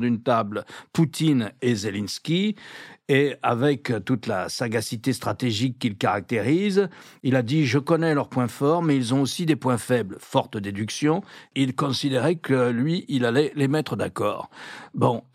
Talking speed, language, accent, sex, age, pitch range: 165 wpm, French, French, male, 60-79, 125-165 Hz